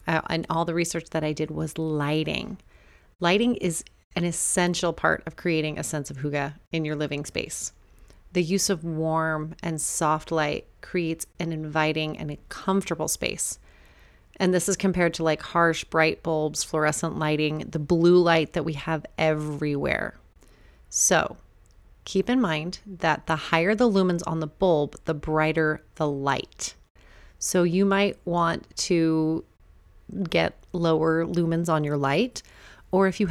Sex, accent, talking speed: female, American, 155 wpm